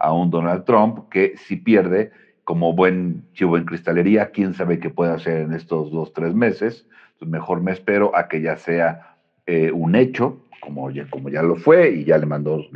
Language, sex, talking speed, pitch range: Spanish, male, 195 wpm, 80-95 Hz